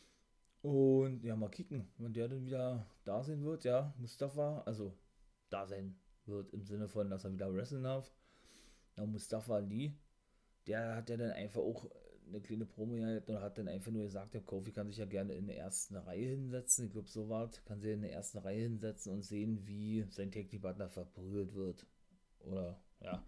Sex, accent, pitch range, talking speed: male, German, 100-115 Hz, 190 wpm